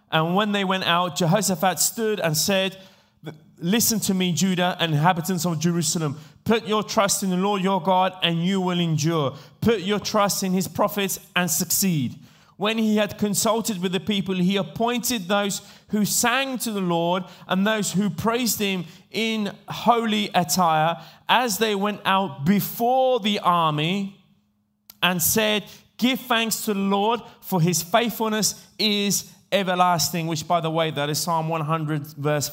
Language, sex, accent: Italian, male, British